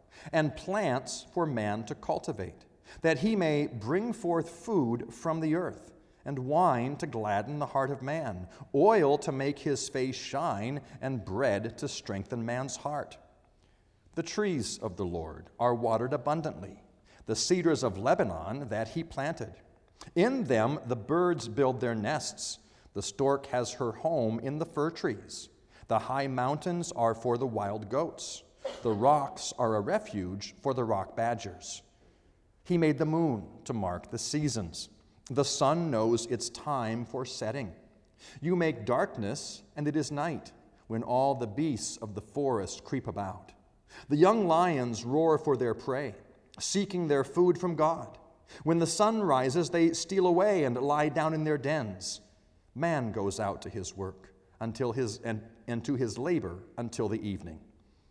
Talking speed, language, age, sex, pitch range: 160 wpm, English, 40-59, male, 110-155 Hz